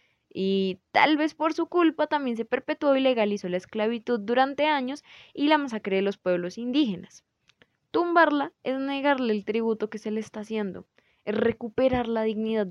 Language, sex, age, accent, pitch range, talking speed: Spanish, female, 10-29, Colombian, 190-255 Hz, 170 wpm